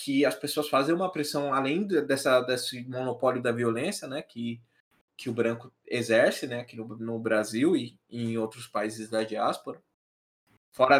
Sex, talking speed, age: male, 170 wpm, 20-39